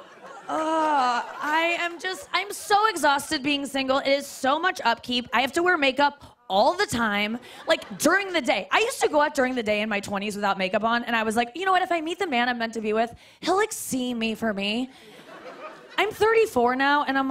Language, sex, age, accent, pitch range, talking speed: English, female, 20-39, American, 230-315 Hz, 230 wpm